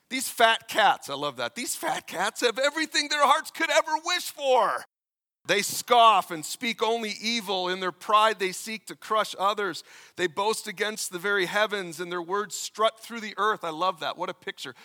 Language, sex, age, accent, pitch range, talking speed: English, male, 40-59, American, 195-255 Hz, 200 wpm